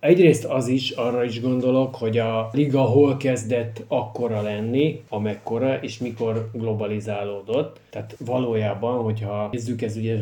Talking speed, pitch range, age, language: 135 wpm, 105-120 Hz, 30-49, Hungarian